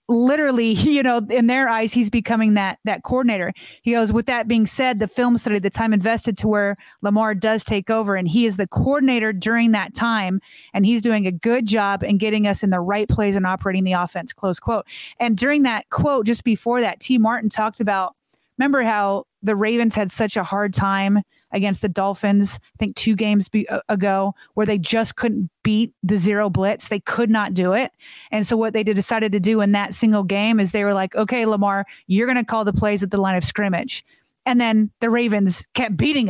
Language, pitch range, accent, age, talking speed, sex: English, 200-235 Hz, American, 30-49, 220 wpm, female